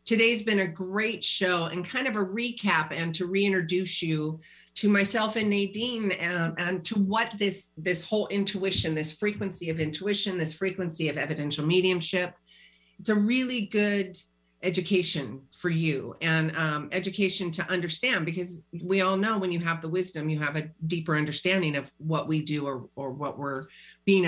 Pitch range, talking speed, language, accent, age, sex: 155-200 Hz, 175 wpm, English, American, 40-59, female